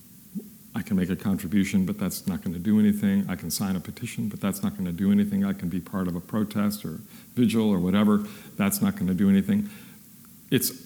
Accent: American